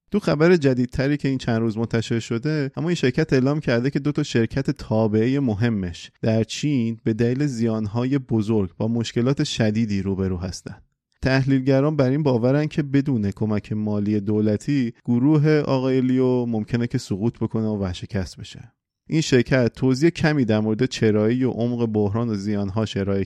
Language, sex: Persian, male